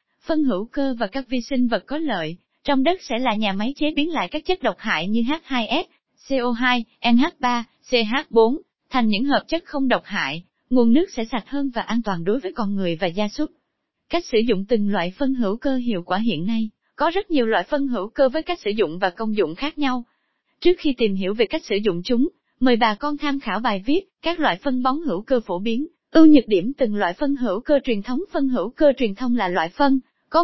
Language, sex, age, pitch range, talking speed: Vietnamese, female, 20-39, 220-285 Hz, 240 wpm